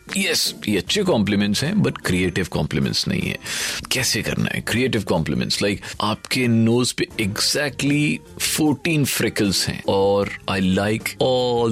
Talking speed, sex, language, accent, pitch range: 140 wpm, male, Hindi, native, 105-155 Hz